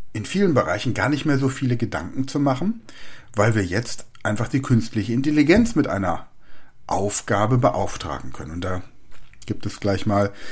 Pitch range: 100-130 Hz